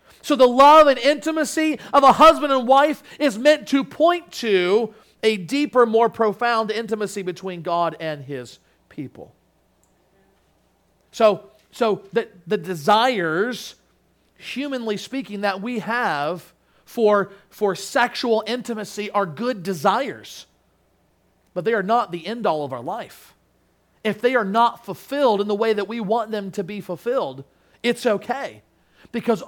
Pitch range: 160-240 Hz